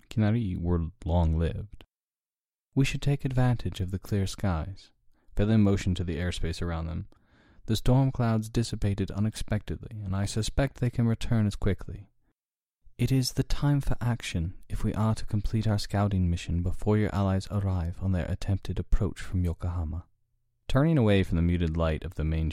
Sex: male